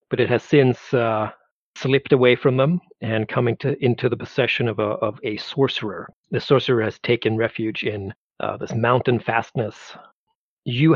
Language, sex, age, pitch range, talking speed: English, male, 40-59, 110-135 Hz, 170 wpm